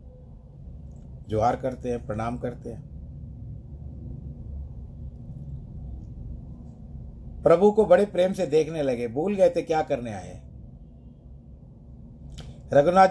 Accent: native